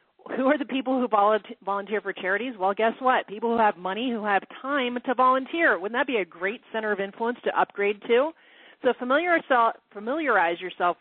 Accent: American